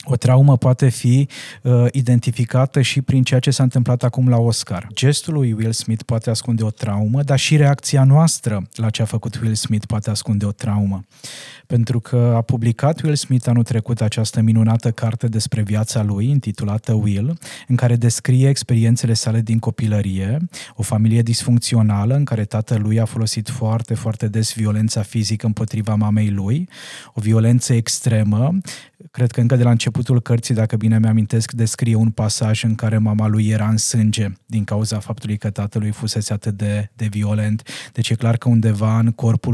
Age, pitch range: 20-39, 110-125 Hz